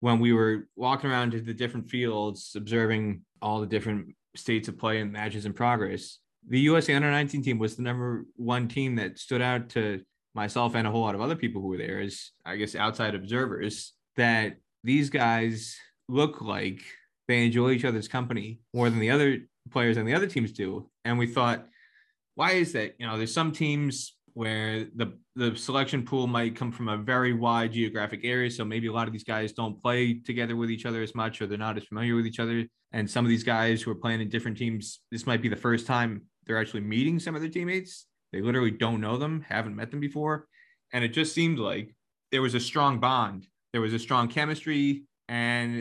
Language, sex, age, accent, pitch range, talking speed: English, male, 20-39, American, 110-125 Hz, 215 wpm